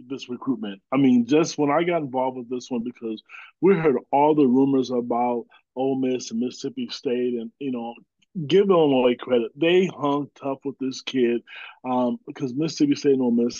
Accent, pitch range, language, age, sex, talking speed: American, 125-140 Hz, English, 20-39, male, 190 wpm